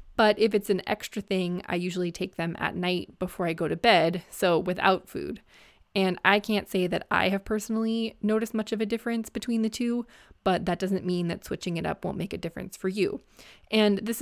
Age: 20-39